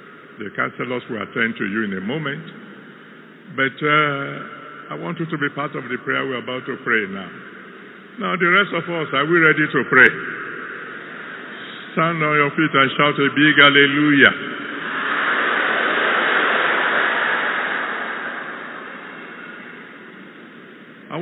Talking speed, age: 130 wpm, 60-79